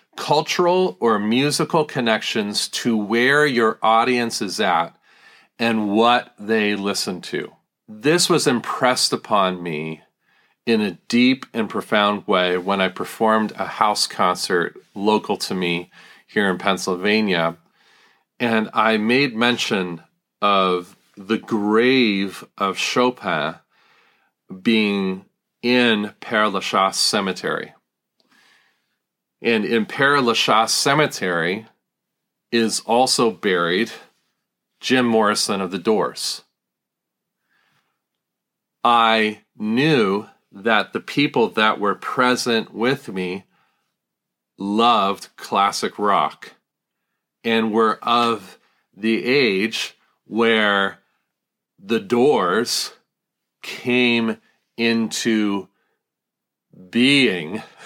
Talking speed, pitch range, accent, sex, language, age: 90 wpm, 100-125 Hz, American, male, English, 40-59